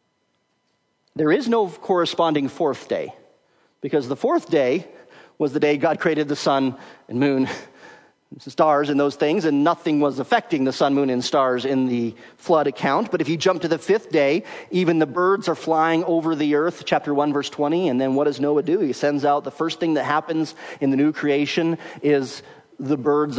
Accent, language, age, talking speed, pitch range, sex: American, English, 40-59, 200 wpm, 135-165 Hz, male